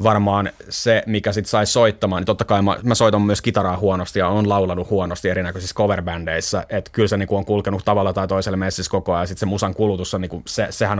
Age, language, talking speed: 30-49, Finnish, 225 wpm